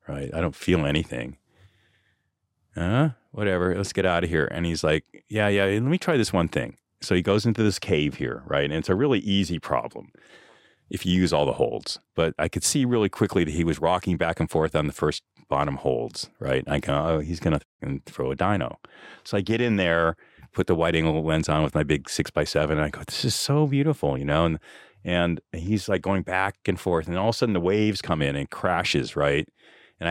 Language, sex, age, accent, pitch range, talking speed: English, male, 40-59, American, 80-110 Hz, 235 wpm